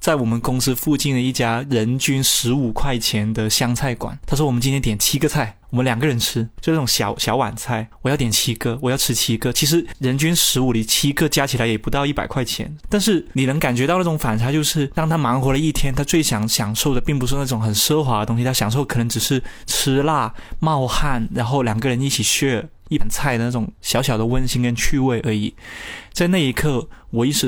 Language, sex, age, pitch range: Chinese, male, 20-39, 115-140 Hz